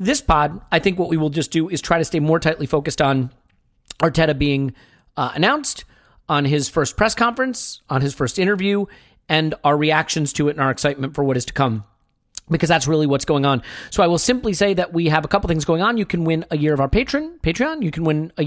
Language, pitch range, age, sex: English, 145-185 Hz, 40-59, male